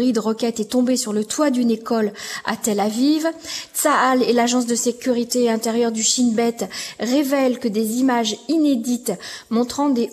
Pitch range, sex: 230-280 Hz, female